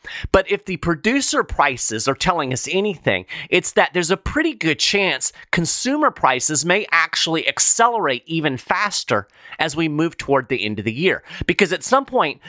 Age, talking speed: 30-49, 175 wpm